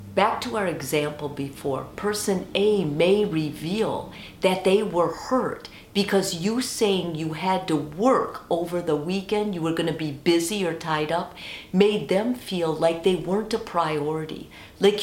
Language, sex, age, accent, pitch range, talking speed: English, female, 50-69, American, 155-205 Hz, 165 wpm